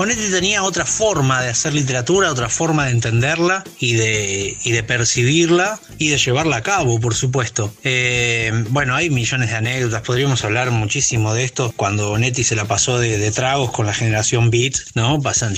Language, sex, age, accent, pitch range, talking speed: Spanish, male, 30-49, Argentinian, 115-165 Hz, 185 wpm